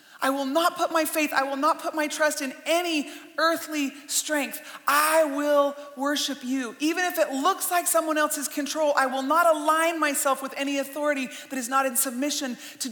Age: 30-49